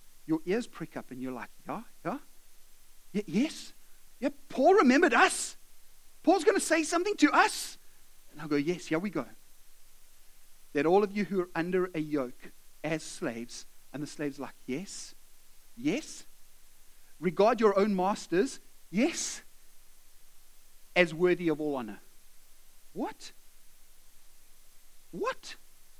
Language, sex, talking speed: English, male, 130 wpm